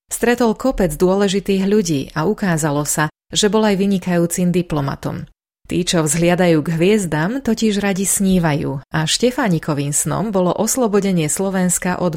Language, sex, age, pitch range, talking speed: Slovak, female, 30-49, 155-195 Hz, 135 wpm